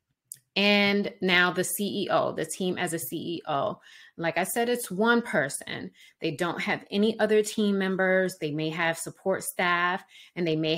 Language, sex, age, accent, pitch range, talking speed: English, female, 30-49, American, 165-205 Hz, 165 wpm